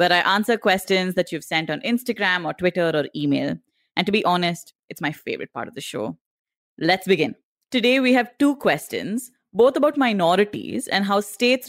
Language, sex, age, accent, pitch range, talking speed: English, female, 20-39, Indian, 175-225 Hz, 190 wpm